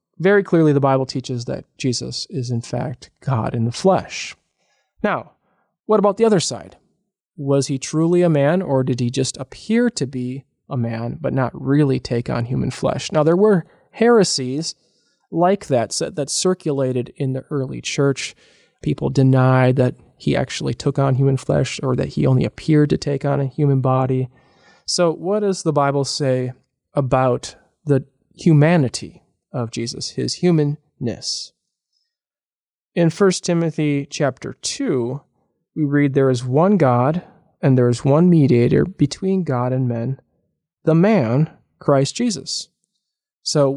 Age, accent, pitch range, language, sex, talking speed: 20-39, American, 130-175 Hz, English, male, 150 wpm